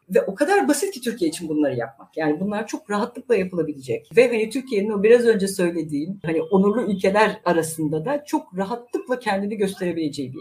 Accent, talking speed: native, 180 wpm